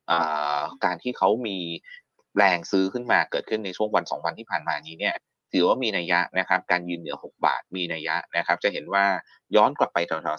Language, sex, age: Thai, male, 20-39